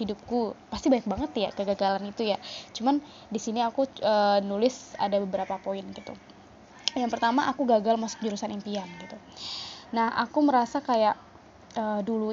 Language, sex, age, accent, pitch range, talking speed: Indonesian, female, 20-39, native, 200-235 Hz, 155 wpm